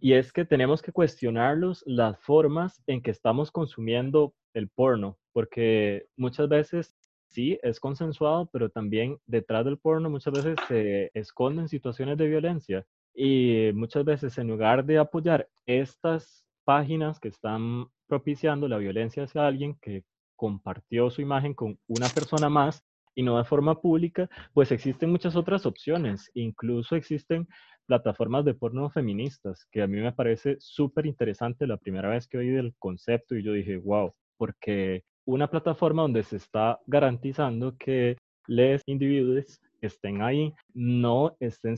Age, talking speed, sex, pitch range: 20-39, 150 wpm, male, 115-150 Hz